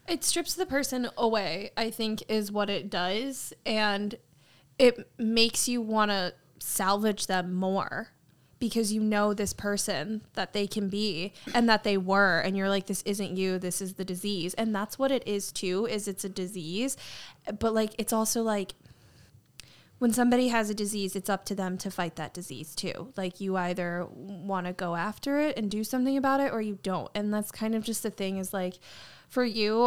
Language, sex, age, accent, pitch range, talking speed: English, female, 10-29, American, 185-220 Hz, 200 wpm